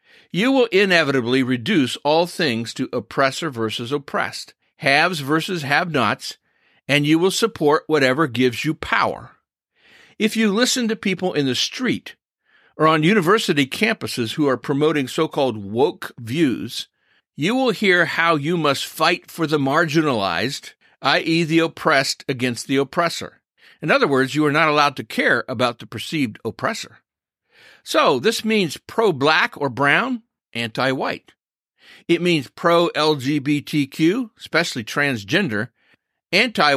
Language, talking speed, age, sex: English, 140 wpm, 50-69, male